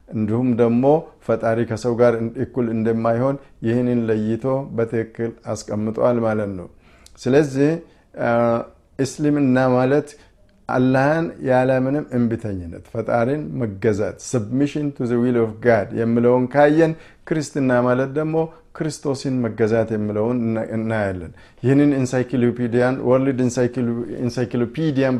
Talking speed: 90 wpm